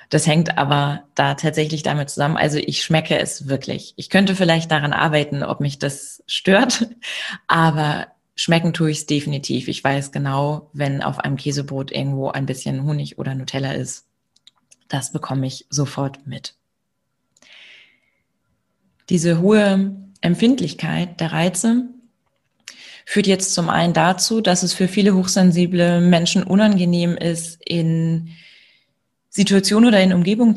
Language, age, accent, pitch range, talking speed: German, 20-39, German, 150-185 Hz, 135 wpm